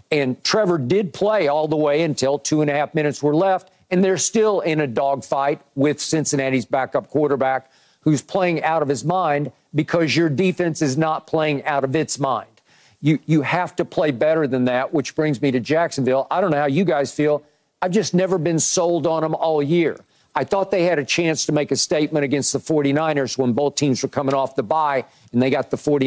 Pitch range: 135-165 Hz